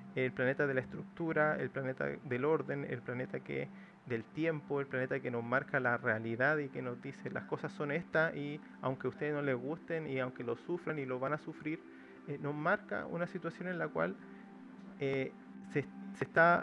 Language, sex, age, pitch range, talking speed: Spanish, male, 30-49, 135-170 Hz, 205 wpm